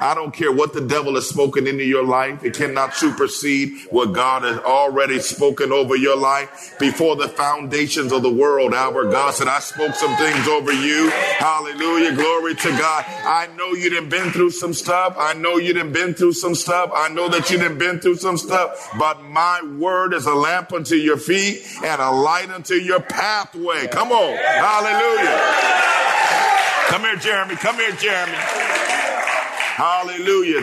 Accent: American